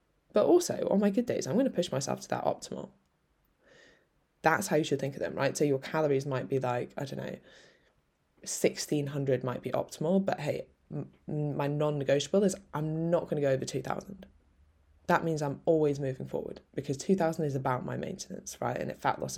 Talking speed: 200 wpm